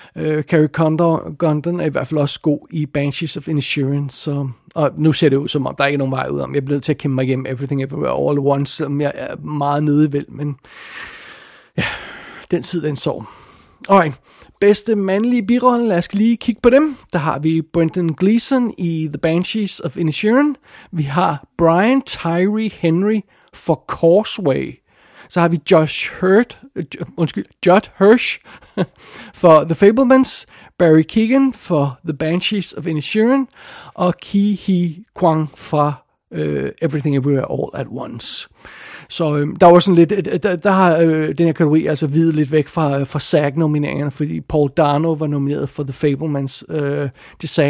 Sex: male